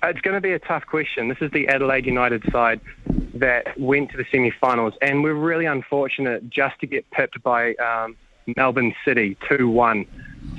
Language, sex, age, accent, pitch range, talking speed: English, male, 20-39, Australian, 120-145 Hz, 175 wpm